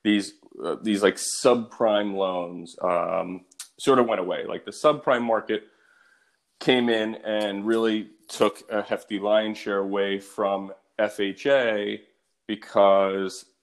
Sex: male